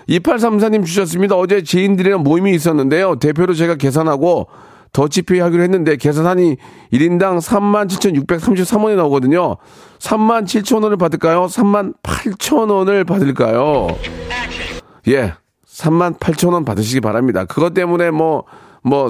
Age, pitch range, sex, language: 40-59, 125-185 Hz, male, Korean